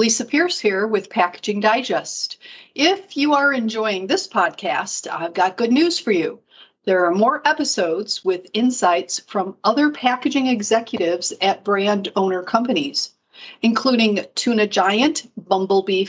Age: 50-69